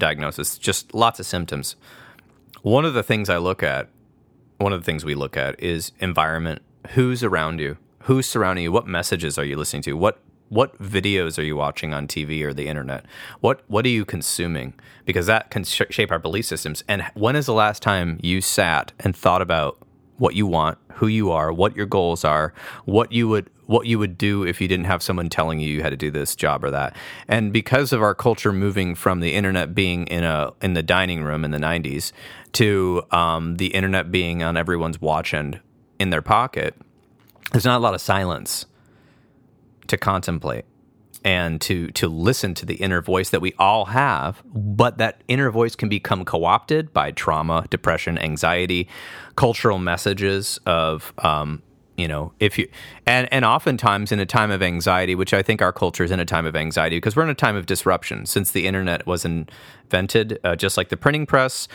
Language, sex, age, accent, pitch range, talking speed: English, male, 30-49, American, 80-110 Hz, 200 wpm